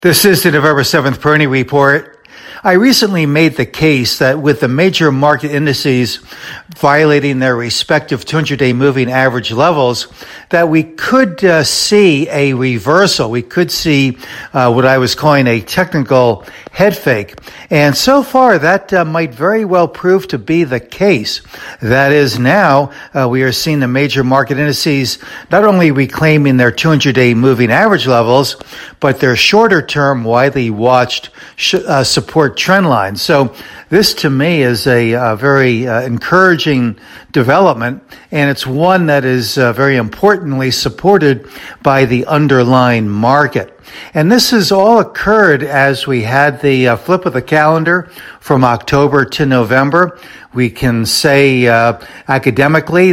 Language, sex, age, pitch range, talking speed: English, male, 60-79, 130-160 Hz, 150 wpm